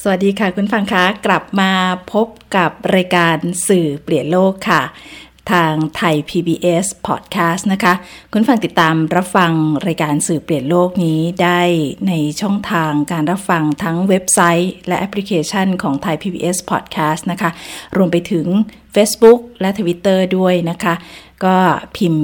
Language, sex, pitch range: Thai, female, 160-190 Hz